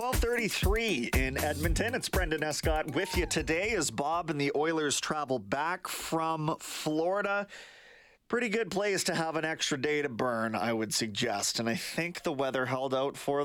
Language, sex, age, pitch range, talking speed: English, male, 30-49, 130-180 Hz, 170 wpm